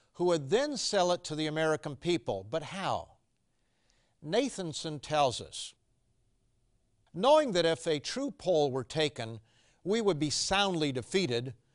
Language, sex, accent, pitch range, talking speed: English, male, American, 125-175 Hz, 140 wpm